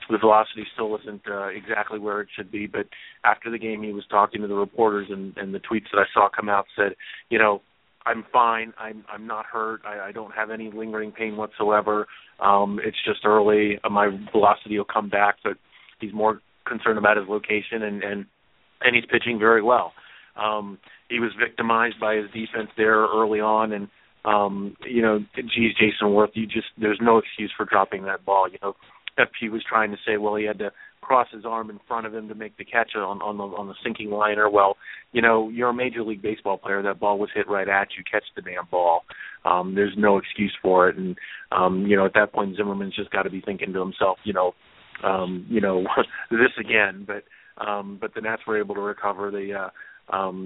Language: English